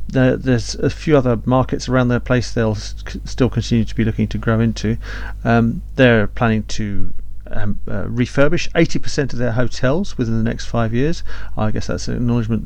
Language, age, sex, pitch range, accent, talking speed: English, 40-59, male, 105-130 Hz, British, 180 wpm